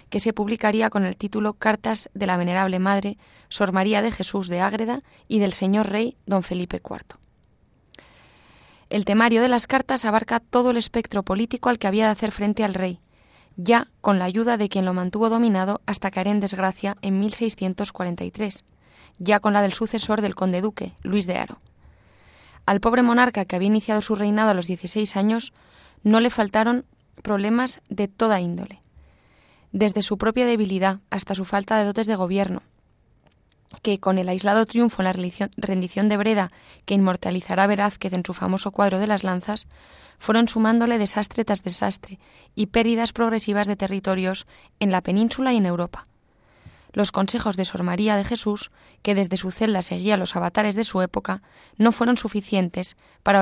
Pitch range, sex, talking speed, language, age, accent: 190-220 Hz, female, 175 wpm, Spanish, 20-39, Spanish